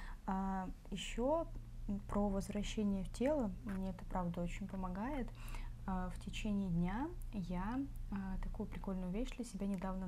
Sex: female